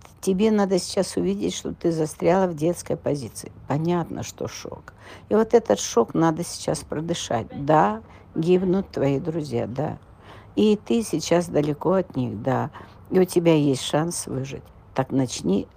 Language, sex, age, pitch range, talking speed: Russian, female, 60-79, 130-190 Hz, 150 wpm